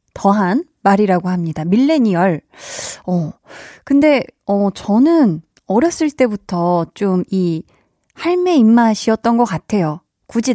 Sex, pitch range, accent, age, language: female, 185-265 Hz, native, 20-39, Korean